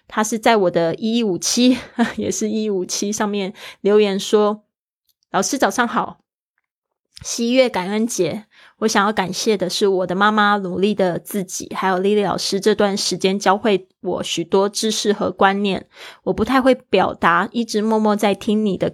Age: 20-39